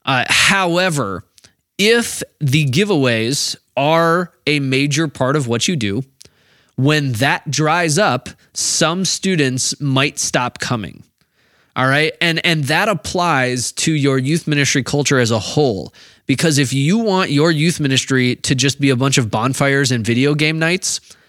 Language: English